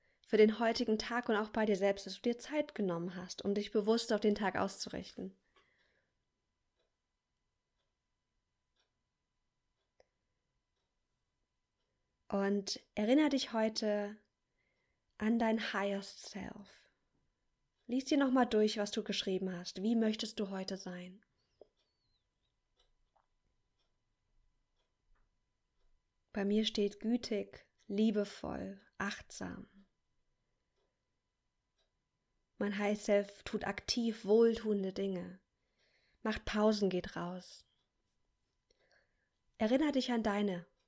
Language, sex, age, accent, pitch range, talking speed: German, female, 20-39, German, 200-225 Hz, 90 wpm